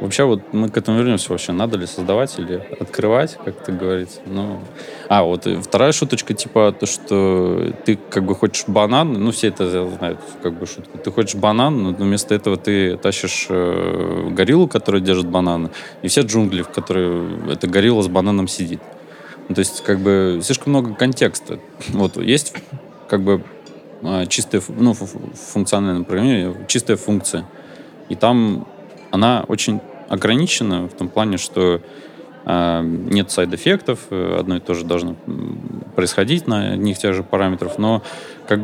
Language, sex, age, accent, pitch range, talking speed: Russian, male, 20-39, native, 90-110 Hz, 155 wpm